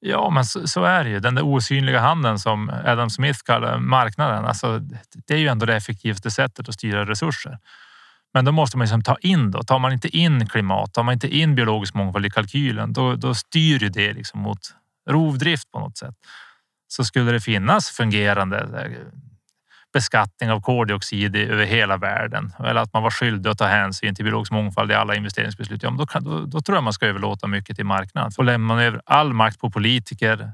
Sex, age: male, 30-49